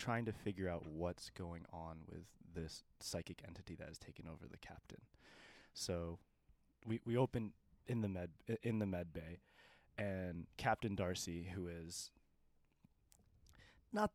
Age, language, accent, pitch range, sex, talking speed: 20-39, English, American, 90-115 Hz, male, 145 wpm